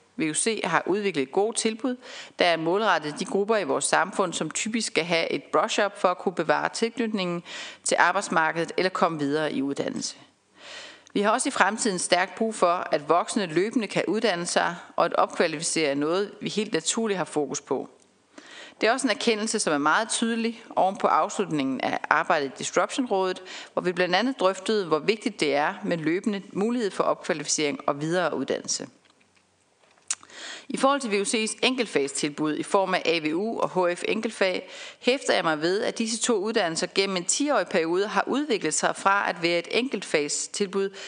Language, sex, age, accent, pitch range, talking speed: Danish, female, 40-59, native, 175-230 Hz, 175 wpm